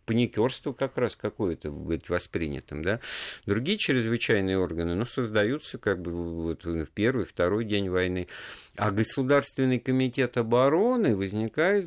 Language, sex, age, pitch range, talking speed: Russian, male, 50-69, 80-120 Hz, 120 wpm